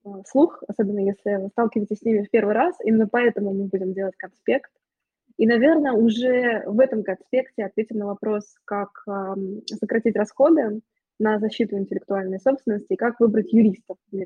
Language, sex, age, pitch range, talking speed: Russian, female, 20-39, 205-245 Hz, 150 wpm